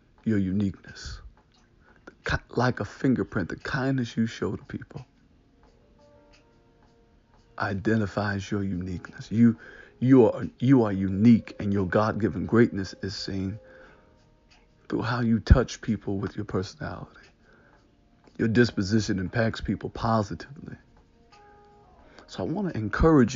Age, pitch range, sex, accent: 50-69, 100-115 Hz, male, American